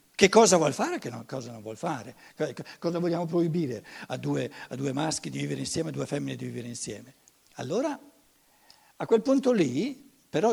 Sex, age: male, 60-79